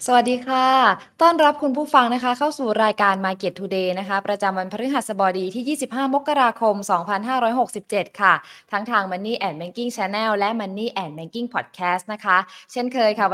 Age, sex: 20-39, female